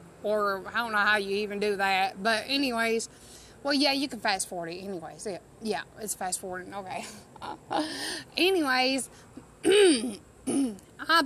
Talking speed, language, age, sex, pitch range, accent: 145 wpm, English, 30-49, female, 220-270 Hz, American